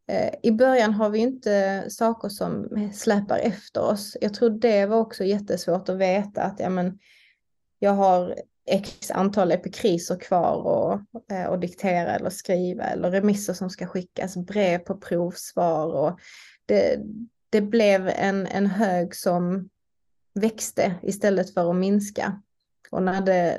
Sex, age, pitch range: female, 20-39, 185-215 Hz